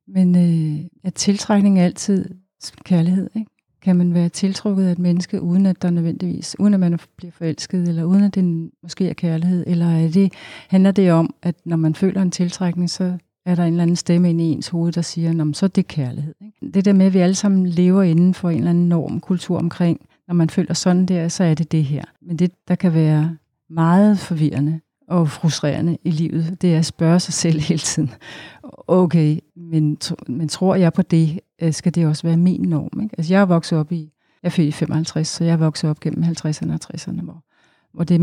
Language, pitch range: Danish, 160-185 Hz